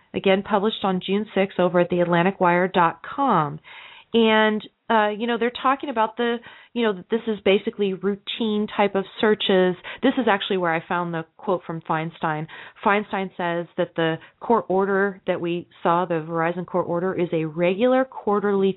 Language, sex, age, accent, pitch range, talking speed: English, female, 30-49, American, 175-235 Hz, 165 wpm